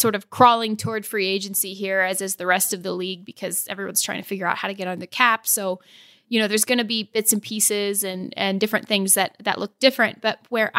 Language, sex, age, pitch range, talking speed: English, female, 20-39, 195-225 Hz, 255 wpm